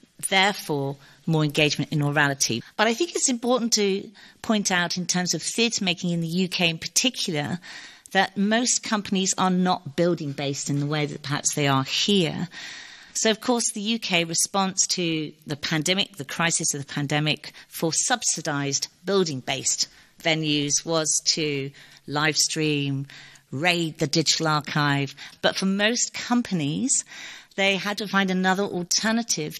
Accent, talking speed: British, 145 wpm